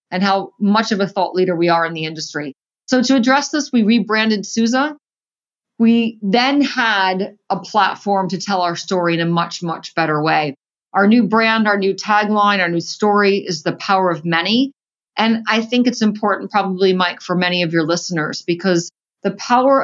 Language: English